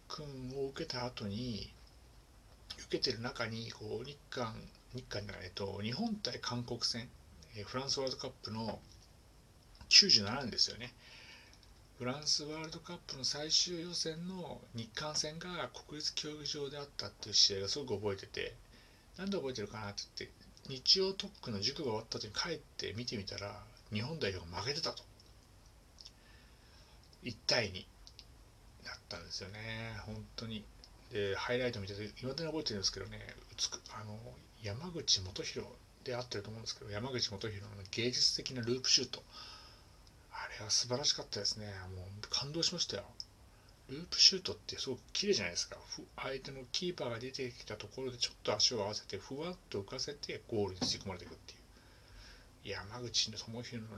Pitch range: 105-135 Hz